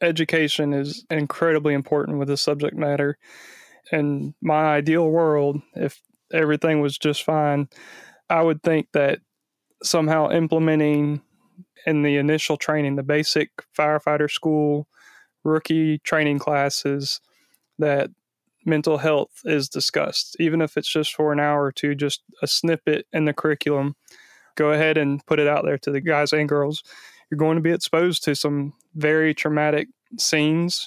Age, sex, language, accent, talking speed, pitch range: 20-39, male, English, American, 150 wpm, 145-160 Hz